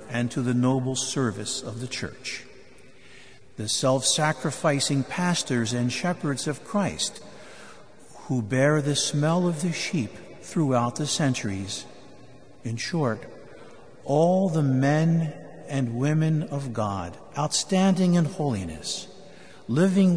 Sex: male